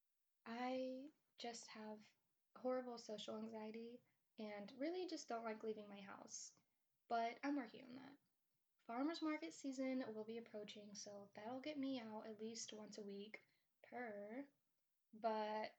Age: 10-29